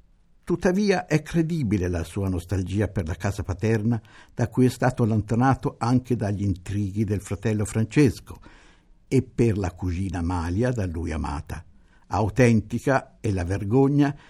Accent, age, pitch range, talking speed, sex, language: native, 60-79, 95-130 Hz, 140 wpm, male, Italian